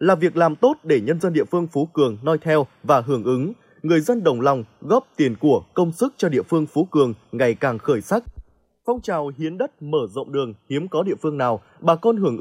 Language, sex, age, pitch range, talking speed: Vietnamese, male, 20-39, 145-190 Hz, 235 wpm